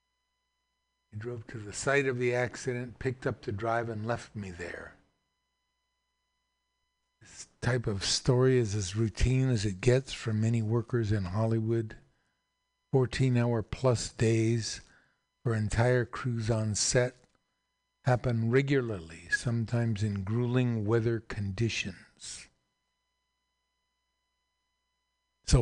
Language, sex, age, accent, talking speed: English, male, 50-69, American, 110 wpm